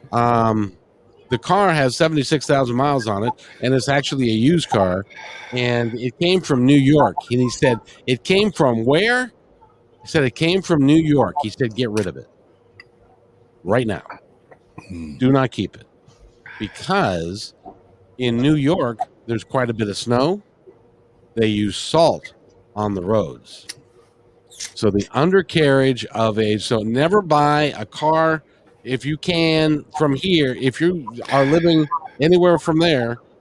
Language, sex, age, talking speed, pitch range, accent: English, male, 50-69, 150 wpm, 115-150 Hz, American